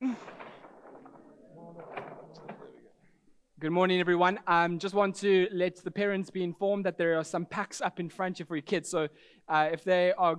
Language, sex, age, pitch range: English, male, 20-39, 155-195 Hz